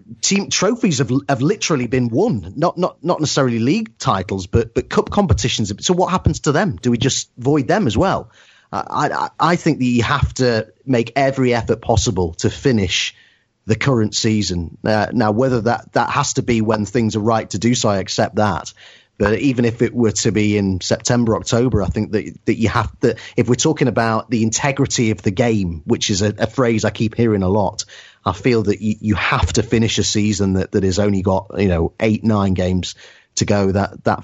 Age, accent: 30-49, British